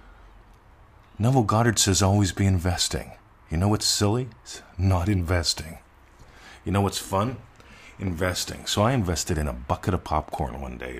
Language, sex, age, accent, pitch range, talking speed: English, male, 50-69, American, 80-105 Hz, 145 wpm